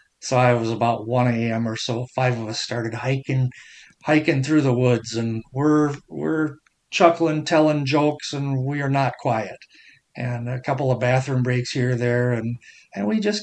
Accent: American